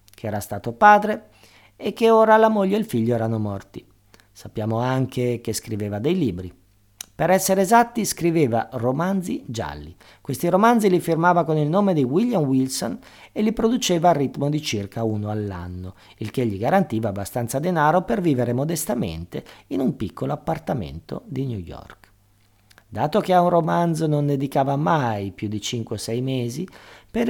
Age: 50-69